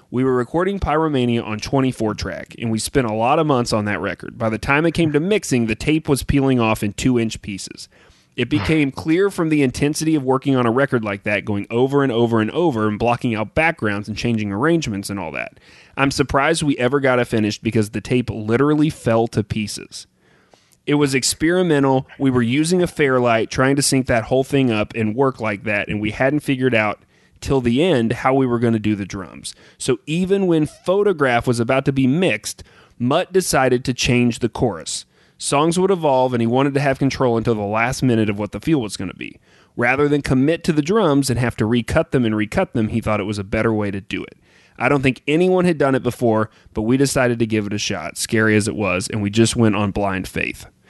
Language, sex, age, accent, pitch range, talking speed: English, male, 30-49, American, 110-140 Hz, 230 wpm